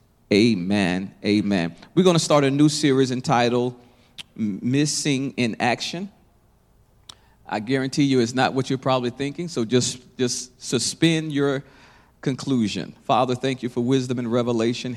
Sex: male